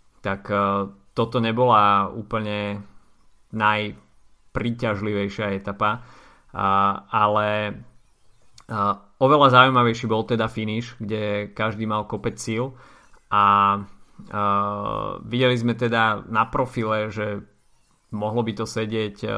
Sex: male